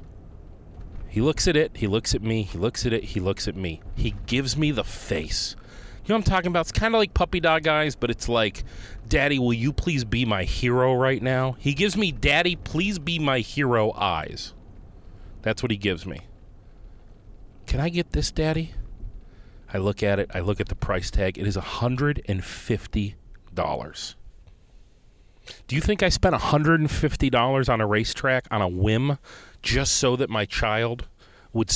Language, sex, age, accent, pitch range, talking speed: English, male, 30-49, American, 100-150 Hz, 180 wpm